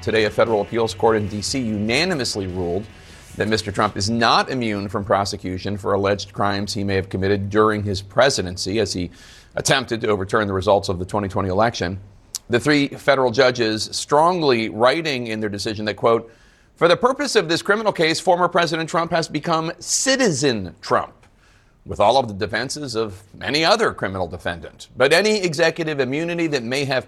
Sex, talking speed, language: male, 175 wpm, English